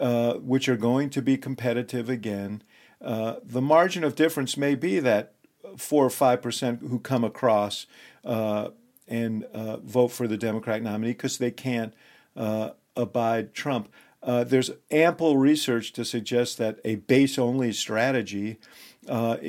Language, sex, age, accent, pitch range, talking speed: English, male, 50-69, American, 110-125 Hz, 150 wpm